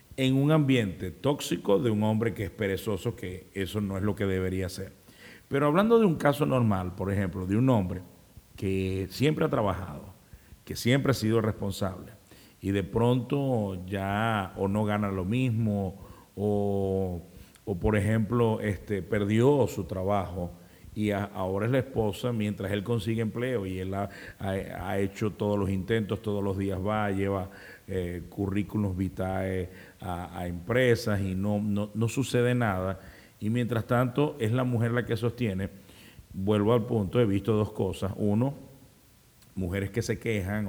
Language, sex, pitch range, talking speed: Spanish, male, 95-115 Hz, 160 wpm